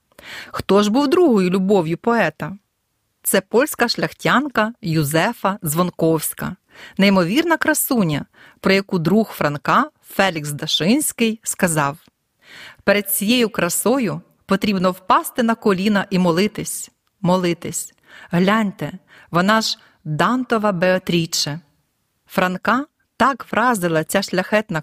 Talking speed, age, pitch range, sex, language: 95 wpm, 30-49, 165-225 Hz, female, Ukrainian